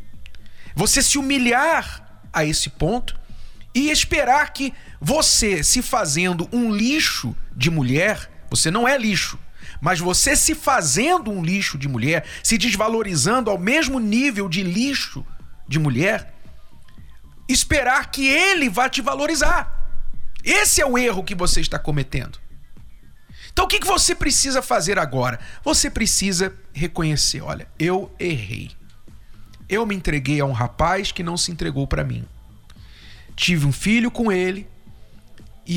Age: 50-69